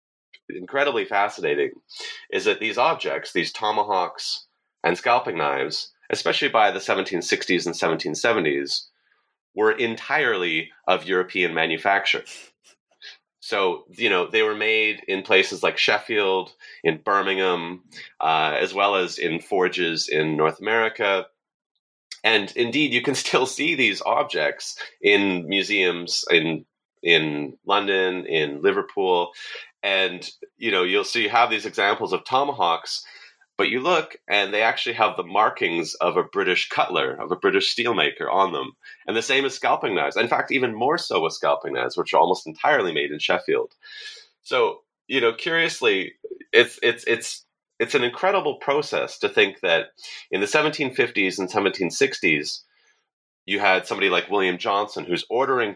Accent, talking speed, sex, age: American, 145 wpm, male, 30-49